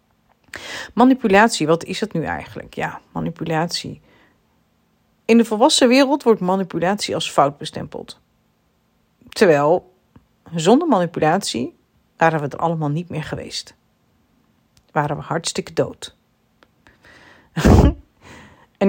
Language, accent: Dutch, Dutch